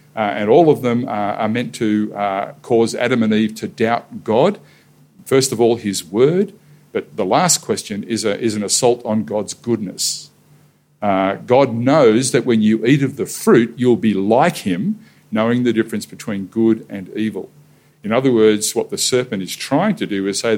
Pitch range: 105-135 Hz